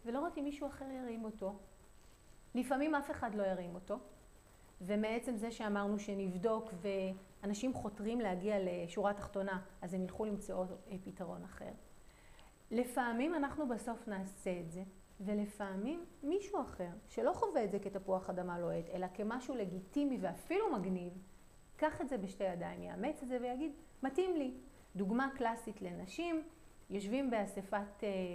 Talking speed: 140 wpm